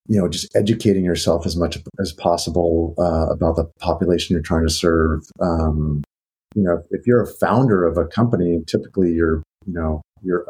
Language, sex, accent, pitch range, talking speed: English, male, American, 80-100 Hz, 185 wpm